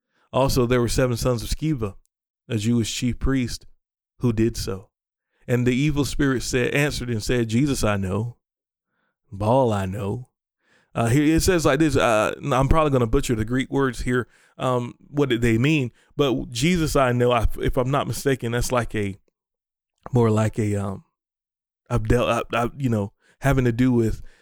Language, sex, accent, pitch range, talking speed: English, male, American, 115-135 Hz, 175 wpm